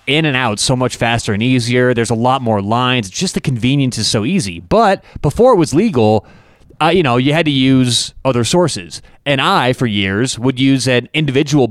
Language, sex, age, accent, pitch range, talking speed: English, male, 30-49, American, 115-145 Hz, 210 wpm